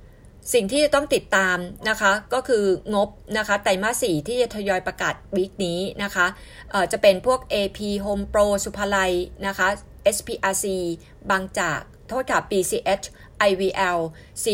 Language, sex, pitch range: Thai, female, 185-230 Hz